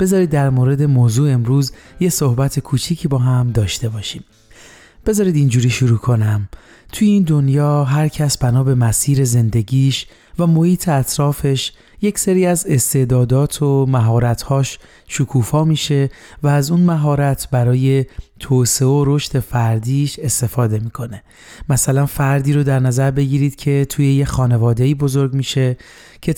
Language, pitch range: Persian, 125-145 Hz